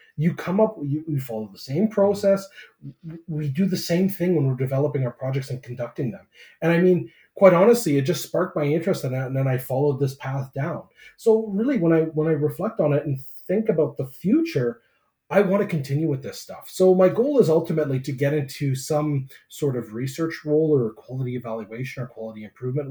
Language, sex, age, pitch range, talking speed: English, male, 30-49, 125-160 Hz, 210 wpm